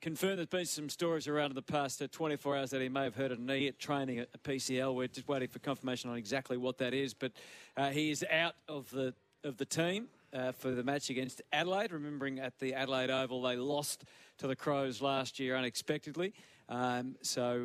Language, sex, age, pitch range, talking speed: English, male, 40-59, 125-150 Hz, 210 wpm